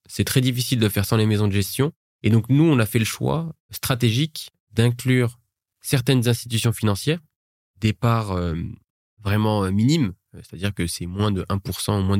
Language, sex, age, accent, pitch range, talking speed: French, male, 20-39, French, 100-120 Hz, 175 wpm